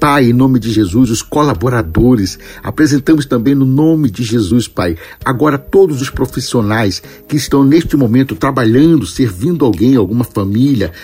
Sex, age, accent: male, 60-79, Brazilian